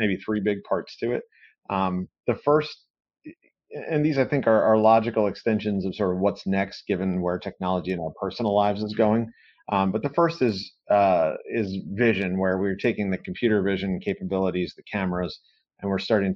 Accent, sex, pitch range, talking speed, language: American, male, 90-110 Hz, 185 wpm, English